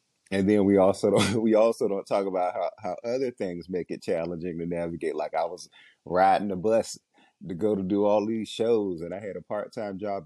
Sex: male